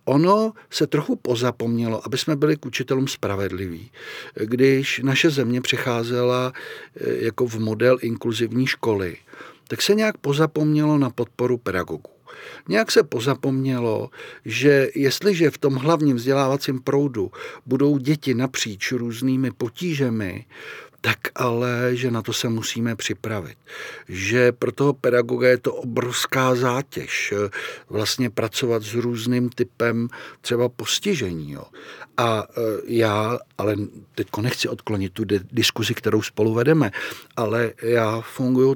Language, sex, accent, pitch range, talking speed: Czech, male, native, 115-135 Hz, 120 wpm